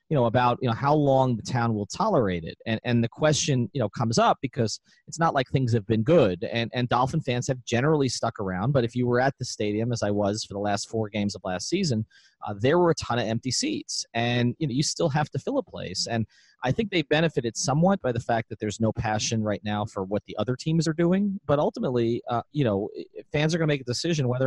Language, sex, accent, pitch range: English, male, American, 115-160 Hz